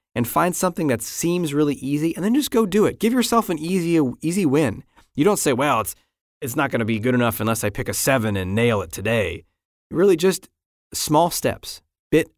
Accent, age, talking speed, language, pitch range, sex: American, 20-39, 220 wpm, English, 110-150 Hz, male